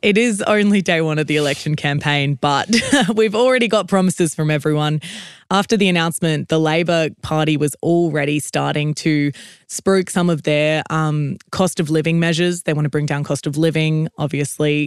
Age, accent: 20-39, Australian